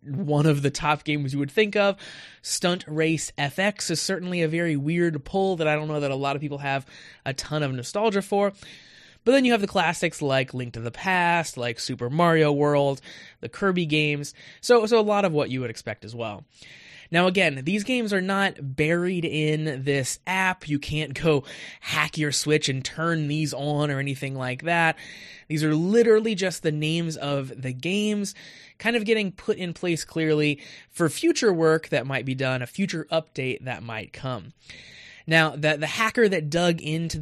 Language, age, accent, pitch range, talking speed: English, 20-39, American, 140-180 Hz, 195 wpm